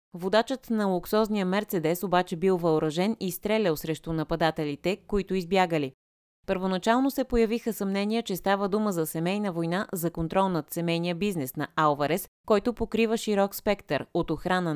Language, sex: Bulgarian, female